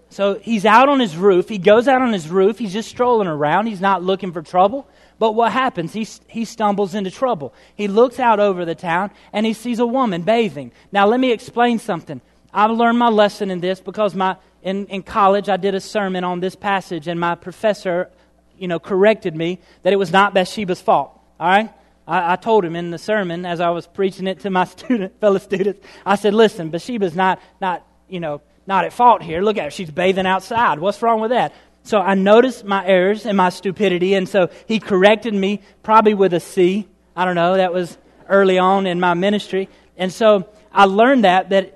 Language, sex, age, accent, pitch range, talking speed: English, male, 30-49, American, 185-215 Hz, 215 wpm